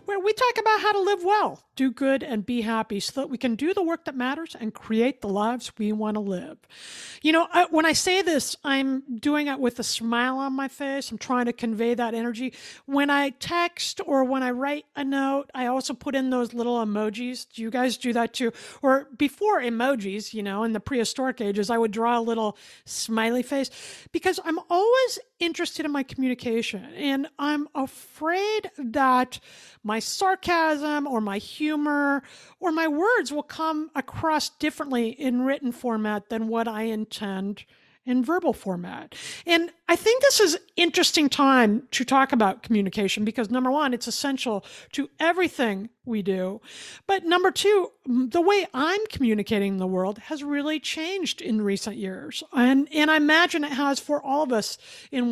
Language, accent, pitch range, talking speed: English, American, 230-320 Hz, 185 wpm